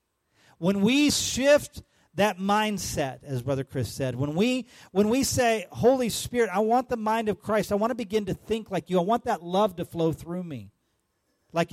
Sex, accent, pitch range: male, American, 125-190 Hz